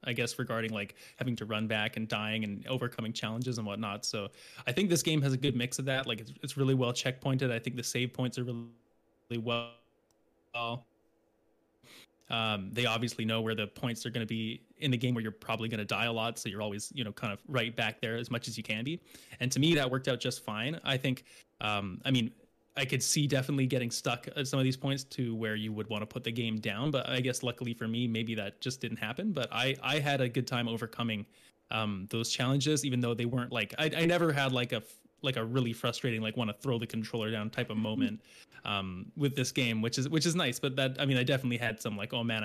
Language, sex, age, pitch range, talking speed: English, male, 20-39, 110-130 Hz, 255 wpm